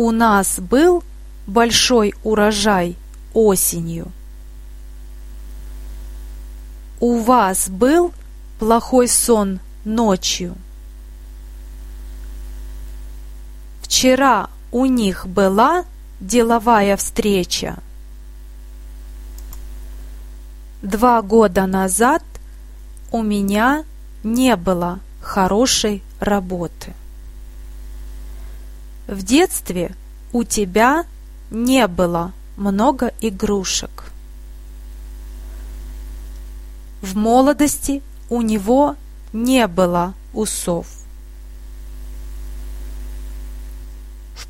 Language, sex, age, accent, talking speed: Russian, female, 30-49, native, 60 wpm